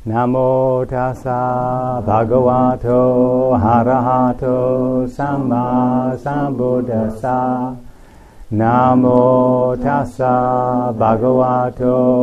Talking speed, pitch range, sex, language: 50 wpm, 110-130 Hz, male, English